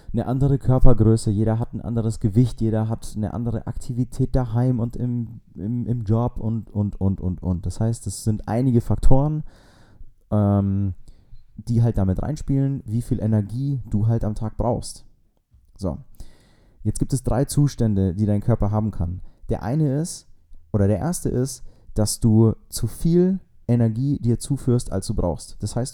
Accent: German